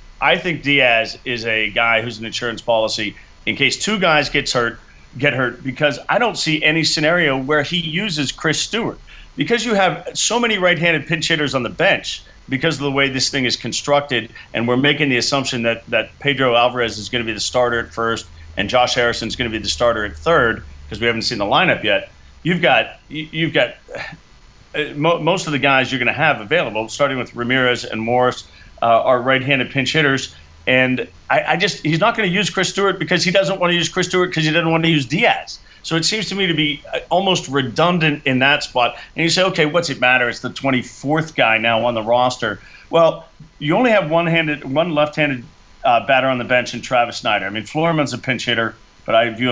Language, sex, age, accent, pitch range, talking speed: English, male, 40-59, American, 115-155 Hz, 225 wpm